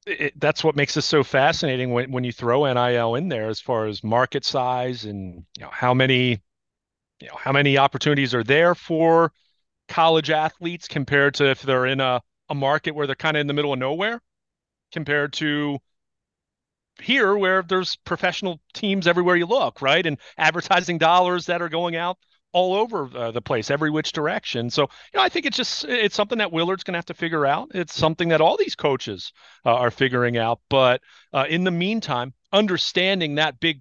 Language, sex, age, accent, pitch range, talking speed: English, male, 40-59, American, 130-165 Hz, 195 wpm